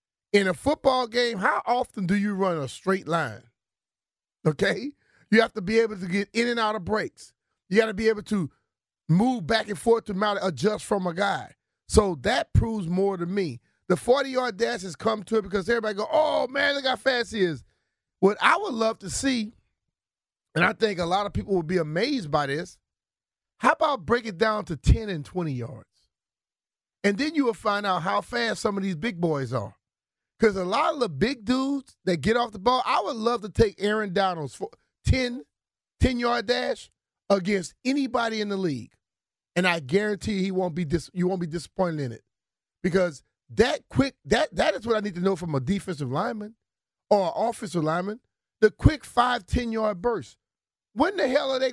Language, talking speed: English, 205 wpm